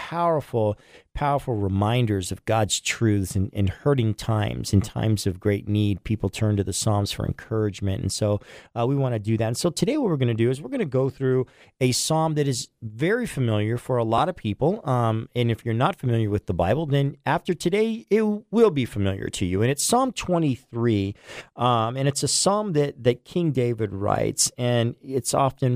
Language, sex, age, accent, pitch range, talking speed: English, male, 40-59, American, 110-145 Hz, 210 wpm